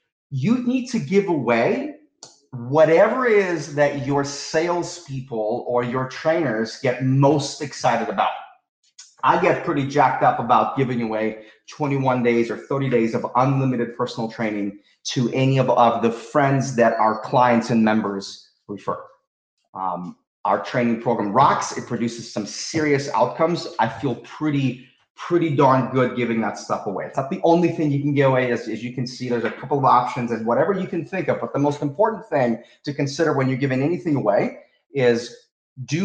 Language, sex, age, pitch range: English, male, 30-49, 120-155 Hz